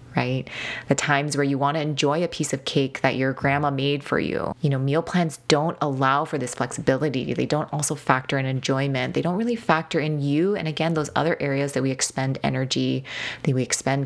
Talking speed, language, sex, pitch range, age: 220 wpm, English, female, 130-155 Hz, 20-39